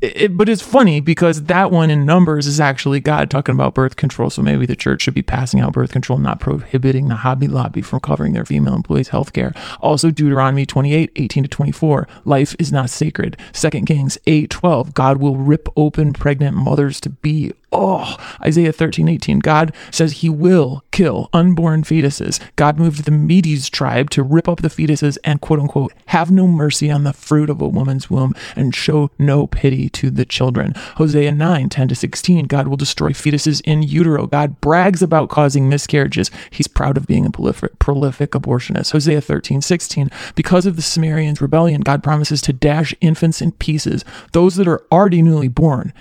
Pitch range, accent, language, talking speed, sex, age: 140-165 Hz, American, English, 190 wpm, male, 30-49